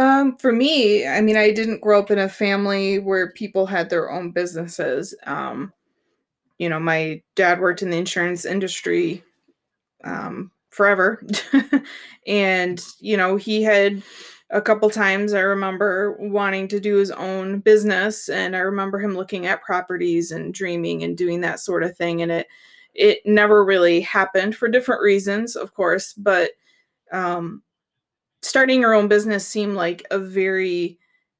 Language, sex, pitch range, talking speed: English, female, 180-215 Hz, 155 wpm